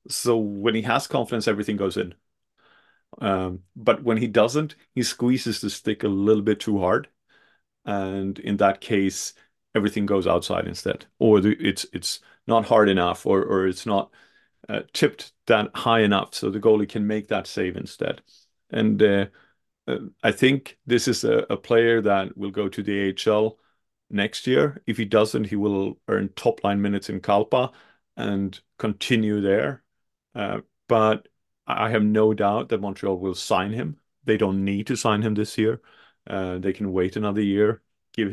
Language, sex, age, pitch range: English, male, 40-59, 95-110 Hz